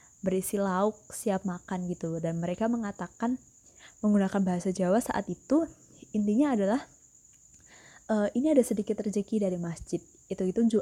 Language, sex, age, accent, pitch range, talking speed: Indonesian, female, 20-39, native, 185-235 Hz, 130 wpm